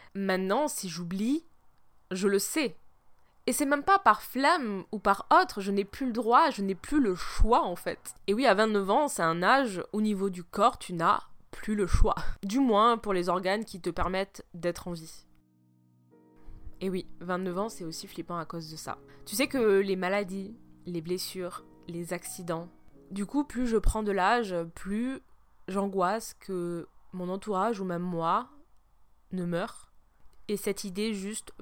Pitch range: 175-220 Hz